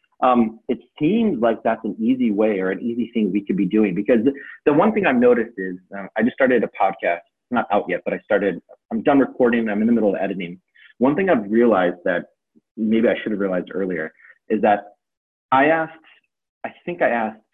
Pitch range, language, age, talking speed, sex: 100-135 Hz, English, 30-49, 220 wpm, male